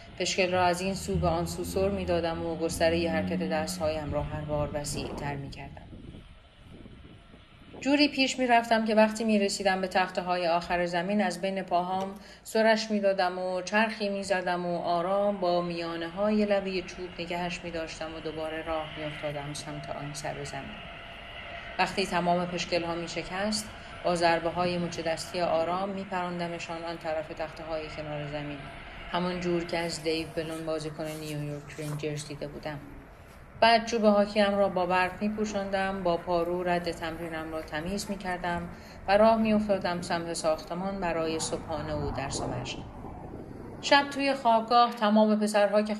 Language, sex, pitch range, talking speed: Persian, female, 160-195 Hz, 160 wpm